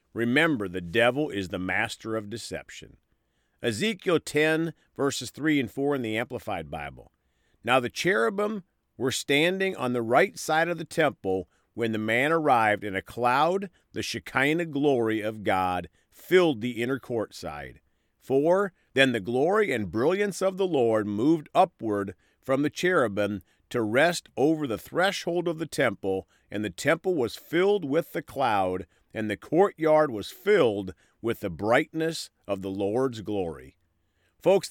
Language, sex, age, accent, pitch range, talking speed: English, male, 50-69, American, 100-150 Hz, 155 wpm